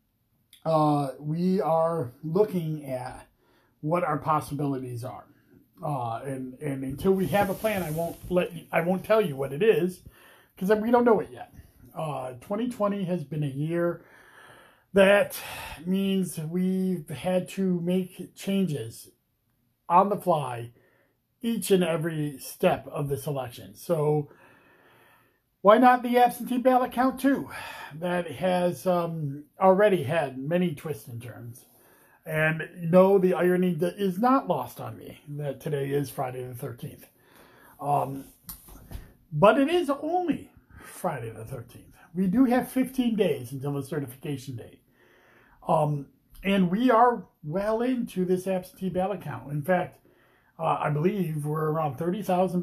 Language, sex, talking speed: English, male, 145 wpm